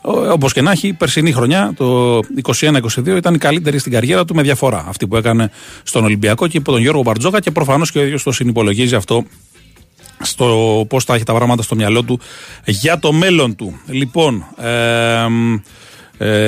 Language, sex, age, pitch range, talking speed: Greek, male, 40-59, 110-140 Hz, 180 wpm